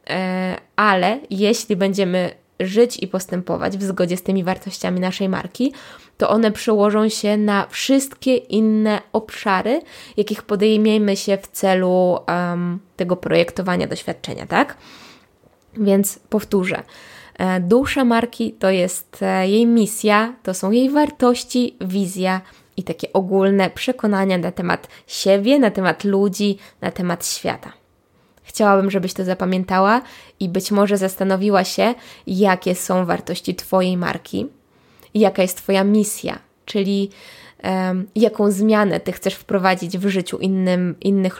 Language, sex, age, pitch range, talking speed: Polish, female, 20-39, 185-215 Hz, 125 wpm